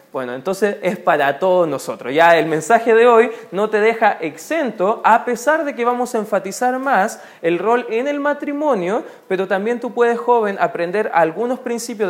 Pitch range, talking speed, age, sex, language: 170-240 Hz, 180 wpm, 20-39, male, Spanish